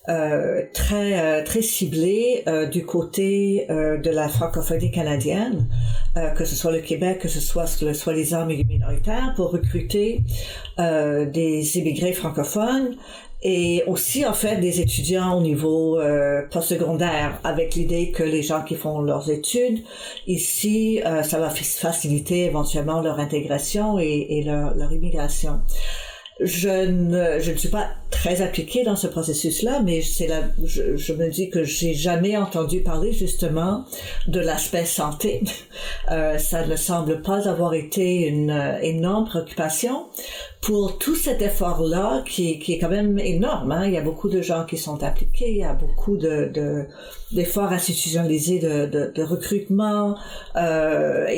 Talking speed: 160 wpm